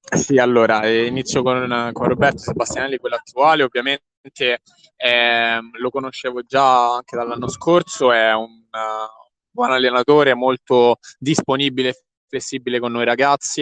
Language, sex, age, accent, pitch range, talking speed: Italian, male, 20-39, native, 120-145 Hz, 125 wpm